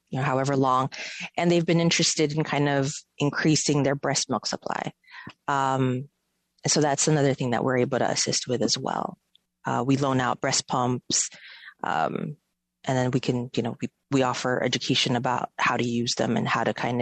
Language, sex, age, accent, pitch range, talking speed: English, female, 30-49, American, 125-150 Hz, 185 wpm